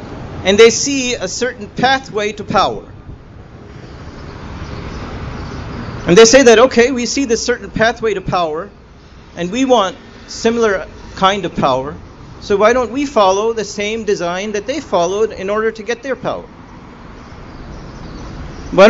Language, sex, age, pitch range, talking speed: English, male, 40-59, 140-220 Hz, 145 wpm